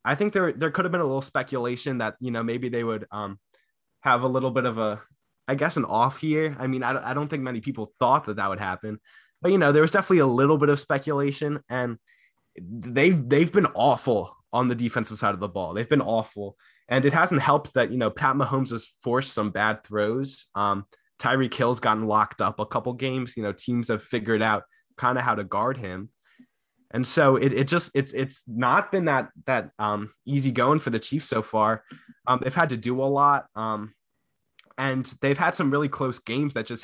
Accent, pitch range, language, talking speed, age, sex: American, 115-145 Hz, English, 225 wpm, 20-39, male